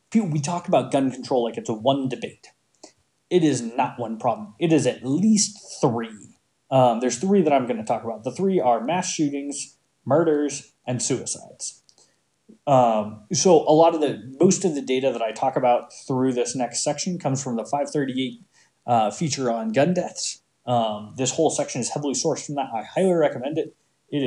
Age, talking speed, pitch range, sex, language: 20-39, 195 wpm, 120-155 Hz, male, English